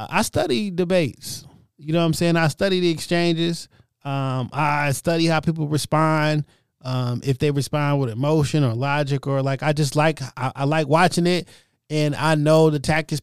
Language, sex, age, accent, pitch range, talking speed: English, male, 20-39, American, 125-165 Hz, 185 wpm